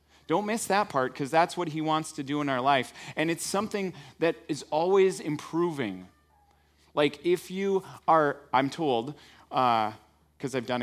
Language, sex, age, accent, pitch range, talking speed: English, male, 30-49, American, 105-155 Hz, 170 wpm